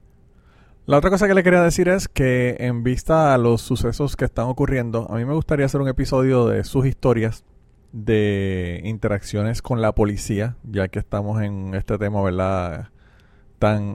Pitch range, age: 105-125 Hz, 30-49